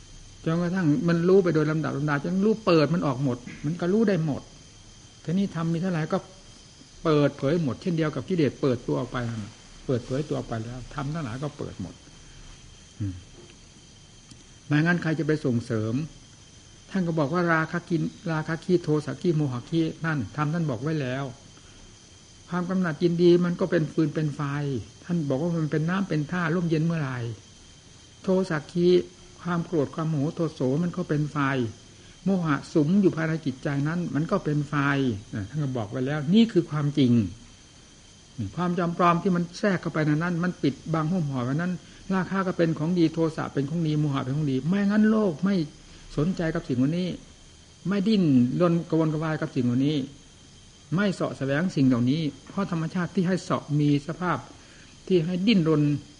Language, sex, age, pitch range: Thai, male, 60-79, 130-175 Hz